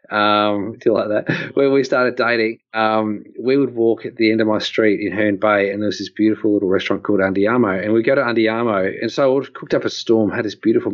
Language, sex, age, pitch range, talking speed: English, male, 30-49, 105-135 Hz, 245 wpm